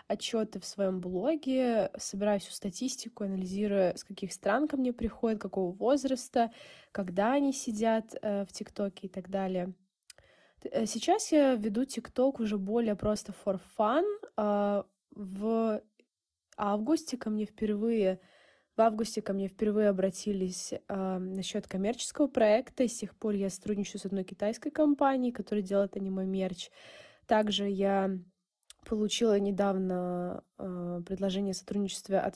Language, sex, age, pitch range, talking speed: Russian, female, 20-39, 190-230 Hz, 130 wpm